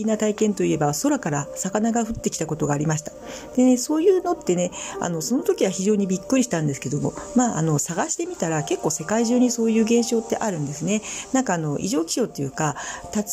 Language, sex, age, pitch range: Japanese, female, 40-59, 165-240 Hz